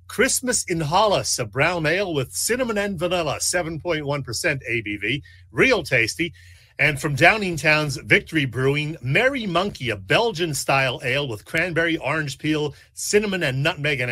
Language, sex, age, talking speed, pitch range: English, male, 40-59, 135 wpm, 130-165 Hz